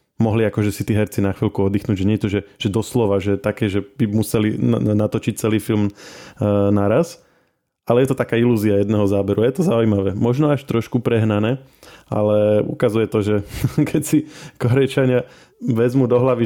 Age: 20-39